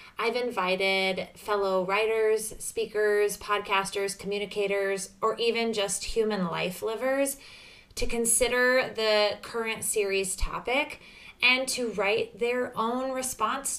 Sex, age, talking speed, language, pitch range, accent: female, 20-39, 110 wpm, English, 185-230 Hz, American